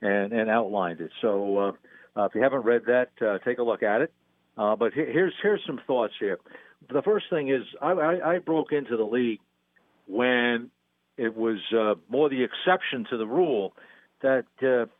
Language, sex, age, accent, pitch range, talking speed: English, male, 60-79, American, 100-140 Hz, 195 wpm